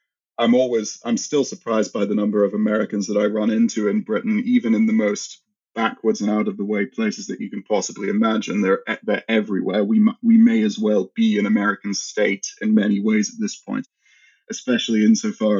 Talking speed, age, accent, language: 200 wpm, 20-39, British, English